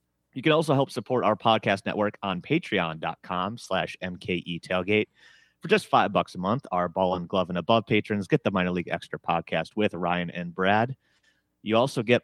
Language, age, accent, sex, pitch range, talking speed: English, 30-49, American, male, 90-120 Hz, 190 wpm